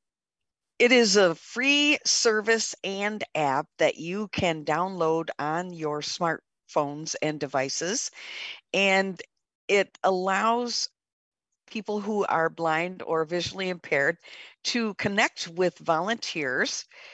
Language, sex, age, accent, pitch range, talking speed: English, female, 50-69, American, 150-185 Hz, 105 wpm